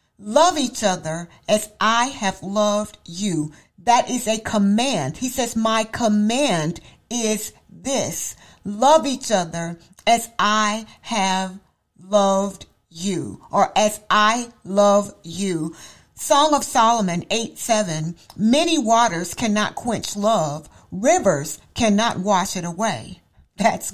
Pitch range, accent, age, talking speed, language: 185-250 Hz, American, 50-69, 115 wpm, English